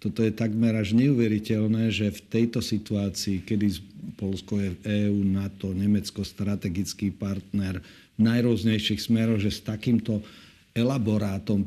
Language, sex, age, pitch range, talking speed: Slovak, male, 50-69, 100-115 Hz, 130 wpm